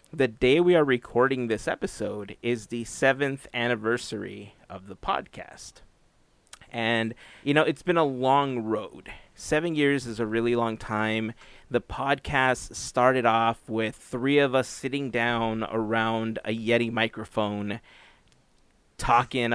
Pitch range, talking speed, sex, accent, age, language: 110-125 Hz, 135 wpm, male, American, 30-49, English